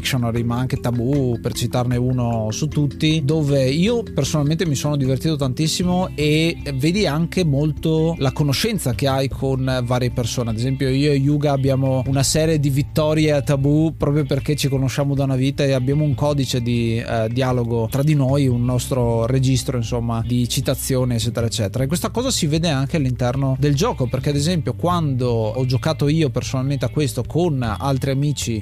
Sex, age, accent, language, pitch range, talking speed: male, 20-39, native, Italian, 130-155 Hz, 180 wpm